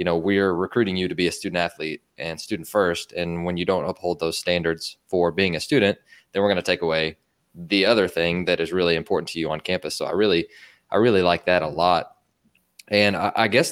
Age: 20-39